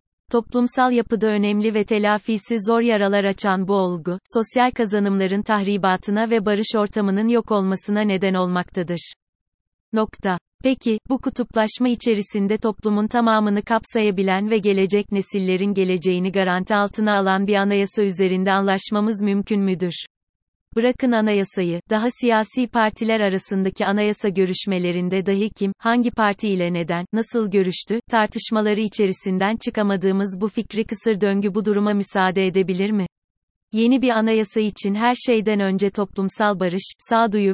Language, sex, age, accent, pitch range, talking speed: Turkish, female, 30-49, native, 190-220 Hz, 125 wpm